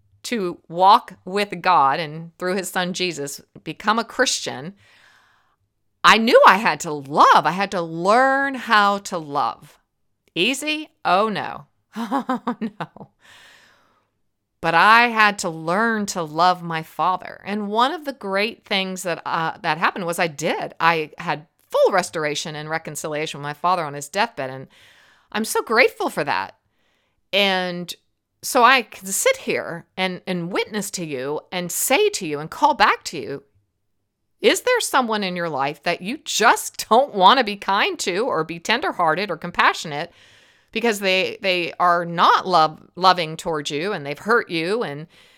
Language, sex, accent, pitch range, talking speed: English, female, American, 160-225 Hz, 165 wpm